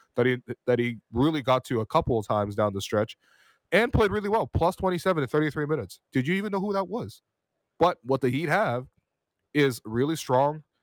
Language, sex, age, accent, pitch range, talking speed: English, male, 20-39, American, 115-155 Hz, 210 wpm